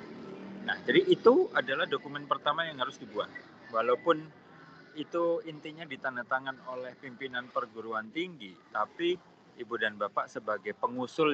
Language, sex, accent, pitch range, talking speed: Indonesian, male, native, 125-170 Hz, 120 wpm